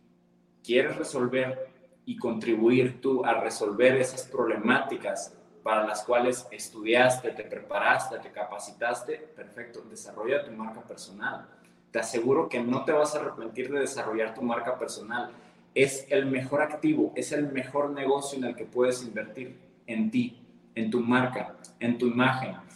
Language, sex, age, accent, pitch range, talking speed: Spanish, male, 20-39, Mexican, 120-140 Hz, 150 wpm